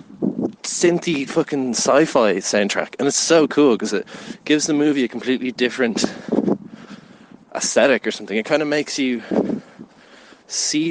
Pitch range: 120-165 Hz